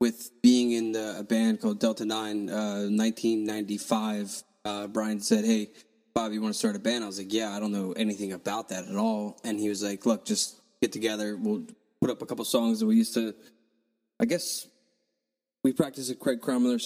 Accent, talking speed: American, 210 wpm